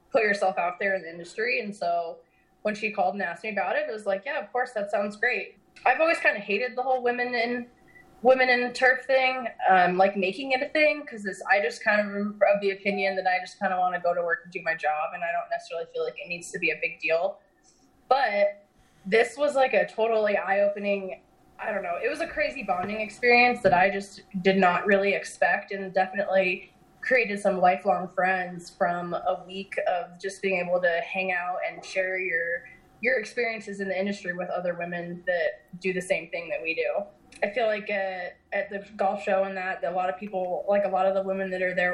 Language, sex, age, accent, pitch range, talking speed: English, female, 20-39, American, 185-220 Hz, 235 wpm